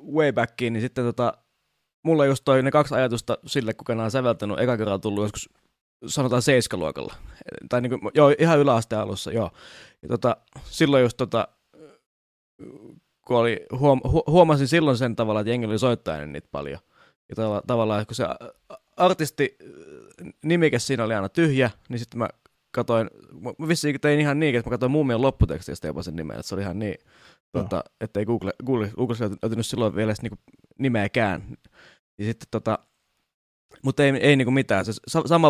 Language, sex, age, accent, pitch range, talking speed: Finnish, male, 20-39, native, 105-135 Hz, 175 wpm